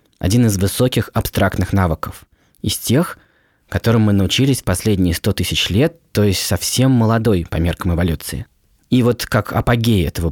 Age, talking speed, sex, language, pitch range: 20-39, 150 wpm, male, Russian, 95-120 Hz